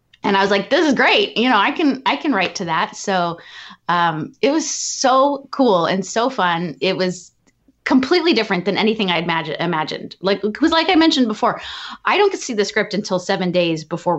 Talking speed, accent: 210 wpm, American